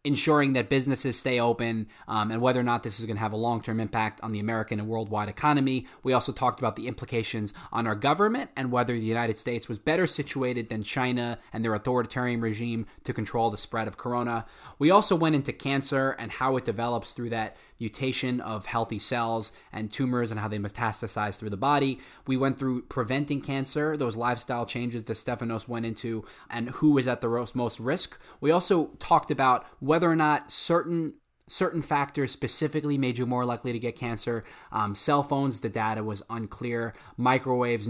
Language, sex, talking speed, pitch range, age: English, male, 195 wpm, 115-135 Hz, 20-39